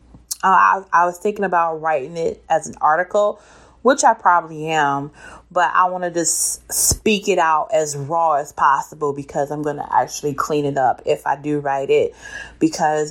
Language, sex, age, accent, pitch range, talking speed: English, female, 30-49, American, 140-210 Hz, 190 wpm